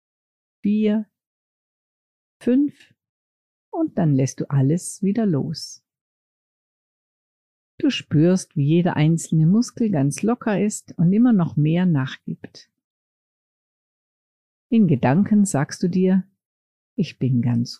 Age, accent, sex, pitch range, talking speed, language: 50-69, German, female, 135-195 Hz, 105 wpm, German